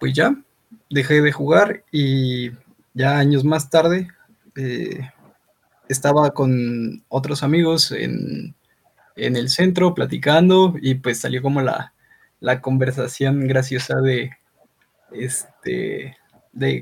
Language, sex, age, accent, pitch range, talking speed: Spanish, male, 20-39, Mexican, 130-145 Hz, 110 wpm